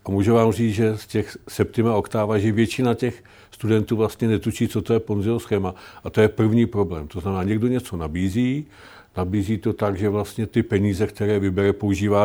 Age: 50-69